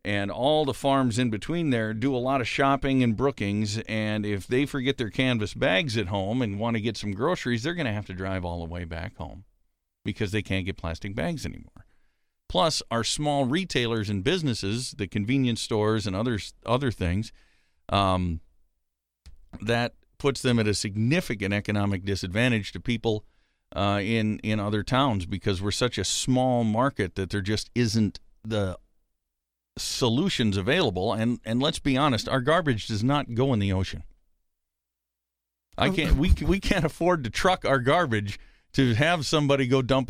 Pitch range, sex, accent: 95-130 Hz, male, American